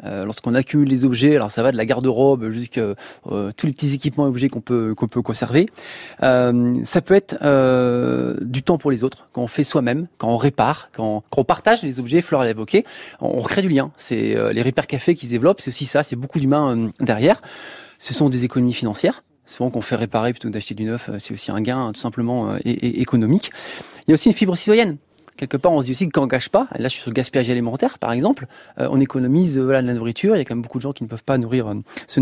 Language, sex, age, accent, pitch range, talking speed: French, male, 20-39, French, 120-160 Hz, 270 wpm